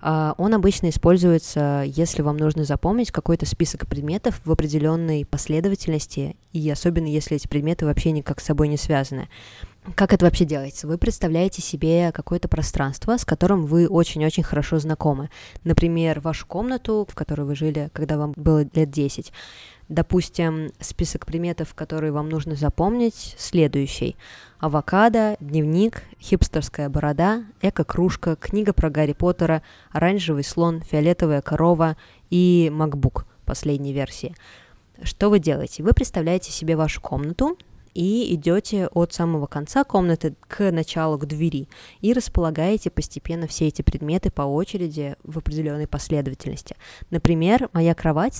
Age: 20-39